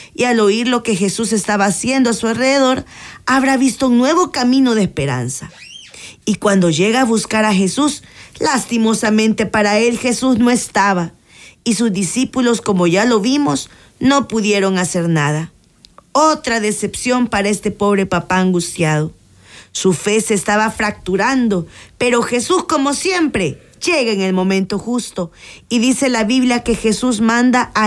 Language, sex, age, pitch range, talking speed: Spanish, female, 40-59, 200-255 Hz, 155 wpm